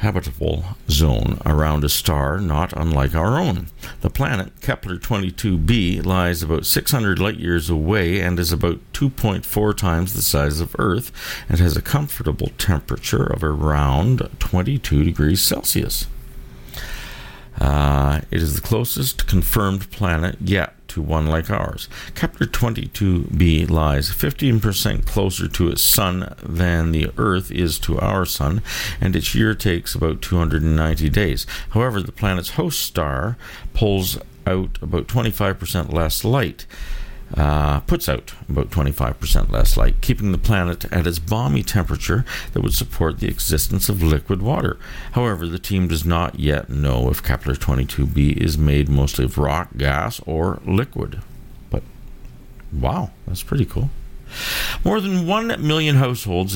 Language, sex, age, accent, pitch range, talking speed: English, male, 50-69, American, 75-105 Hz, 140 wpm